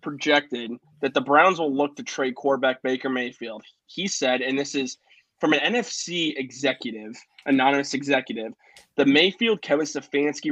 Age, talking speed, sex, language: 20-39, 150 wpm, male, English